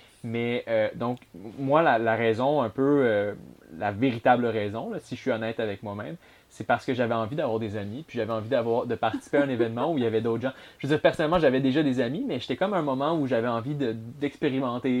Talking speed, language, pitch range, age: 250 wpm, French, 110-130 Hz, 20-39